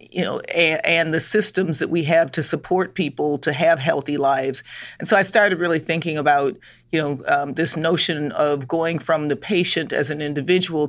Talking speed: 200 wpm